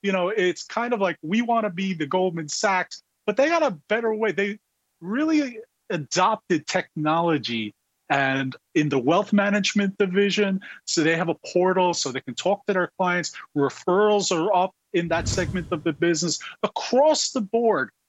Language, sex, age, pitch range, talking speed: English, male, 30-49, 145-205 Hz, 175 wpm